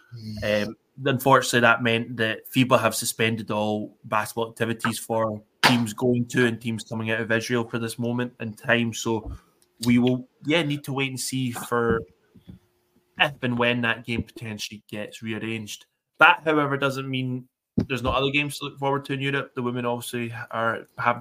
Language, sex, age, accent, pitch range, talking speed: English, male, 20-39, British, 110-125 Hz, 180 wpm